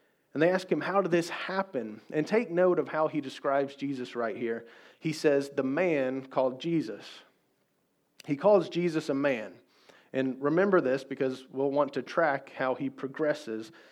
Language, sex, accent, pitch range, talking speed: English, male, American, 130-160 Hz, 175 wpm